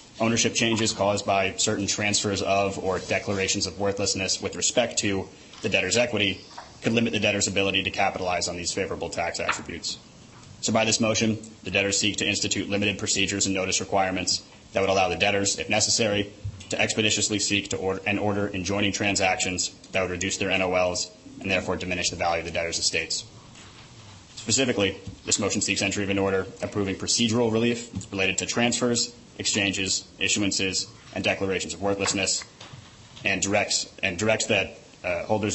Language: English